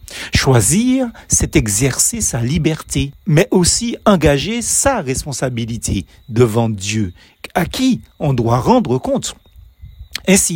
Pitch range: 125-195 Hz